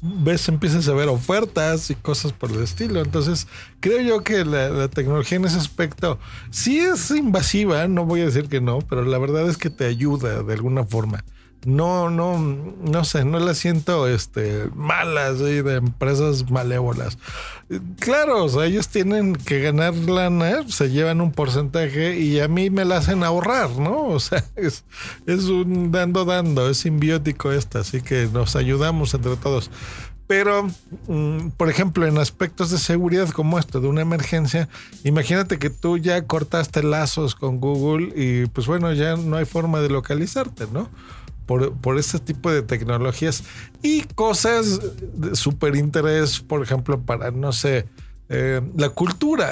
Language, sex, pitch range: Spanish, male, 130-170 Hz